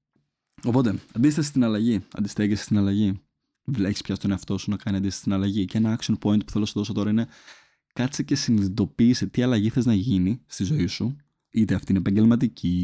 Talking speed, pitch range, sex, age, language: 195 wpm, 95-110 Hz, male, 20-39, Greek